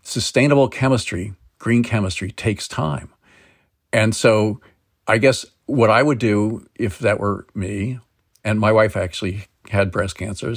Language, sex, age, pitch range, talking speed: English, male, 50-69, 95-120 Hz, 140 wpm